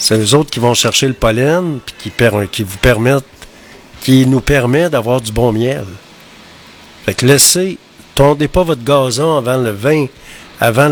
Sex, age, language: male, 50-69, French